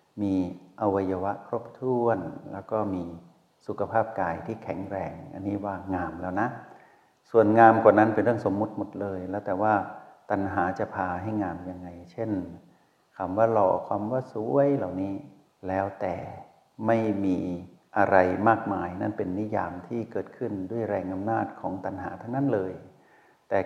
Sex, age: male, 60-79